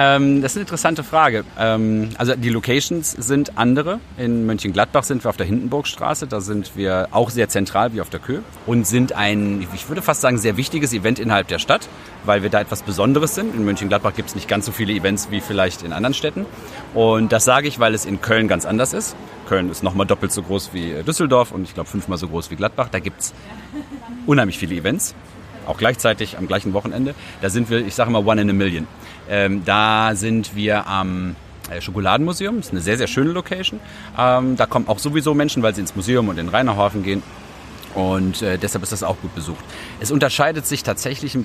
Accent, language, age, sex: German, German, 40-59, male